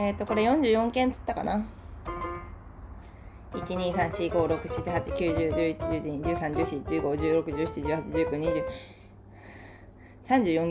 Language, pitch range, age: Japanese, 150-235 Hz, 20-39